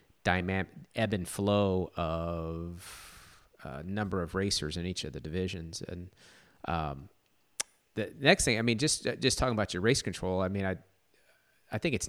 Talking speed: 165 wpm